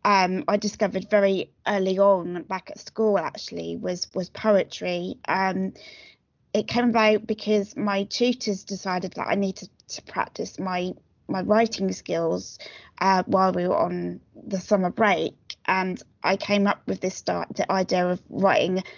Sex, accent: female, British